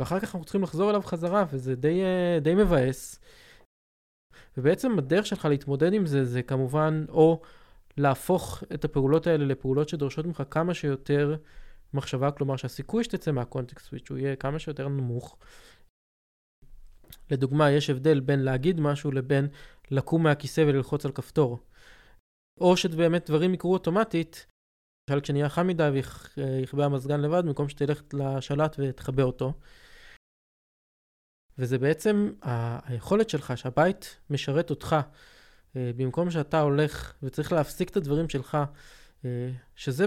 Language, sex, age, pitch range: Hebrew, male, 20-39, 135-165 Hz